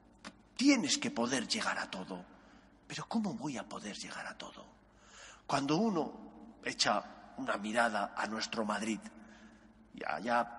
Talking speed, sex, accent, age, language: 135 wpm, male, Spanish, 40-59, Spanish